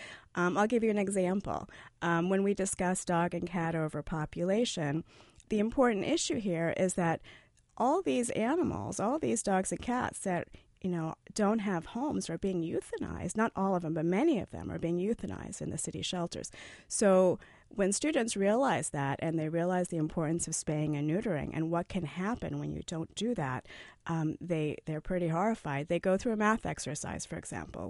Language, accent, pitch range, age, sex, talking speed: English, American, 150-190 Hz, 40-59, female, 185 wpm